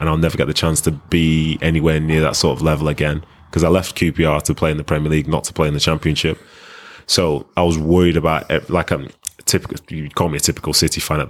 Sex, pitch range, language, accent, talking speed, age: male, 80-85 Hz, English, British, 255 wpm, 20-39